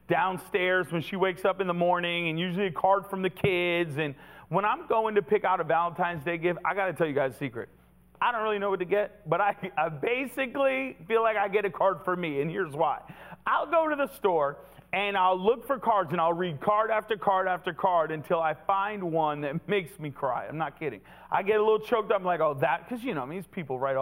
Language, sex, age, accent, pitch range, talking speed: English, male, 40-59, American, 145-205 Hz, 255 wpm